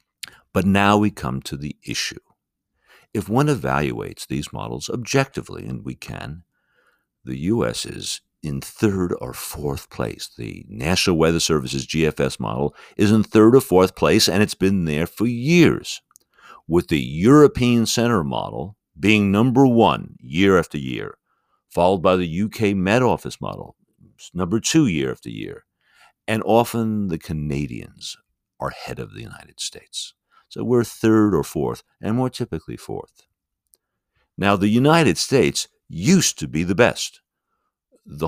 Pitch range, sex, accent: 80-115 Hz, male, American